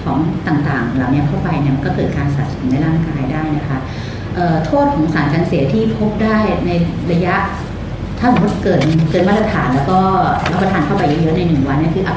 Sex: female